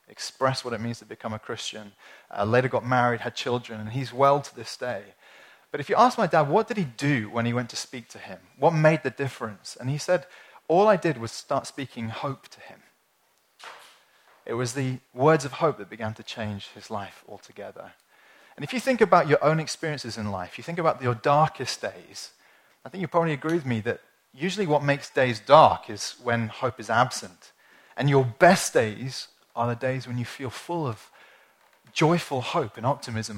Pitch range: 120-155 Hz